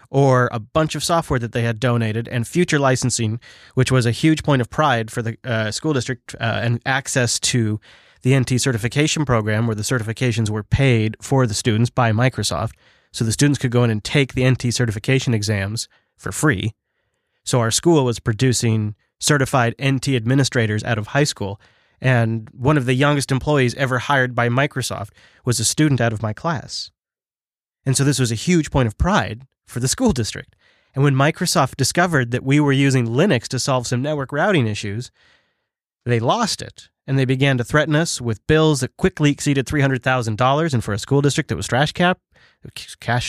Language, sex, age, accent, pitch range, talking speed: English, male, 30-49, American, 115-140 Hz, 195 wpm